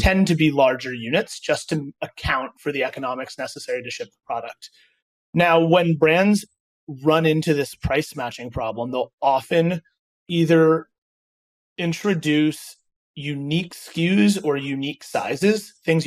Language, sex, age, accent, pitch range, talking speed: English, male, 30-49, American, 130-180 Hz, 130 wpm